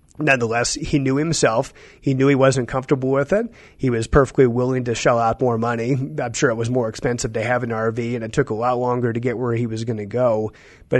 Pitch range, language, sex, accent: 115-140 Hz, English, male, American